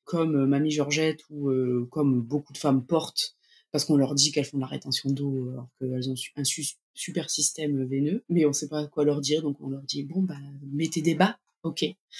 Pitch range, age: 140-165 Hz, 20-39